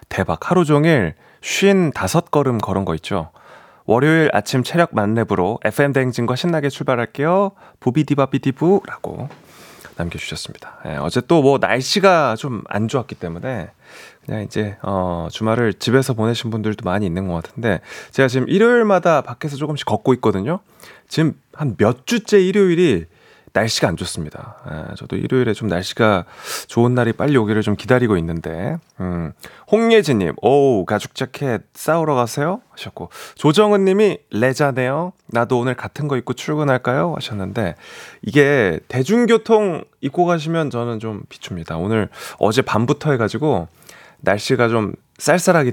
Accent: native